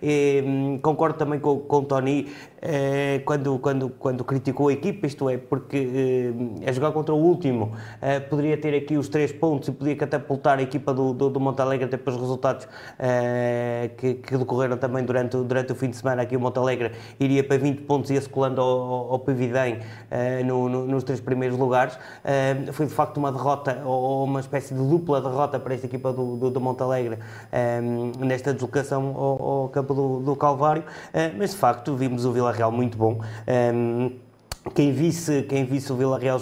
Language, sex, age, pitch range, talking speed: Portuguese, male, 20-39, 120-140 Hz, 200 wpm